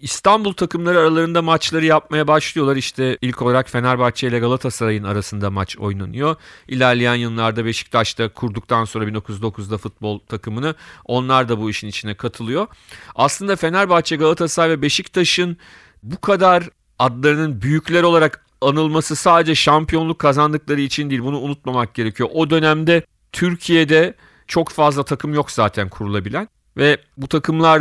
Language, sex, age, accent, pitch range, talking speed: Turkish, male, 40-59, native, 120-160 Hz, 130 wpm